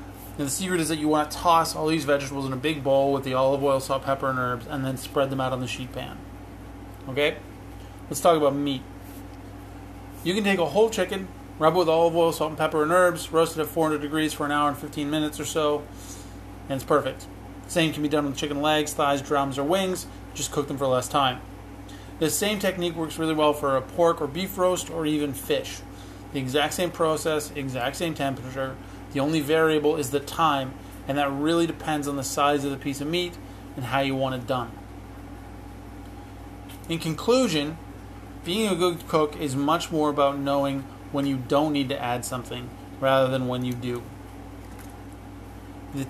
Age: 30-49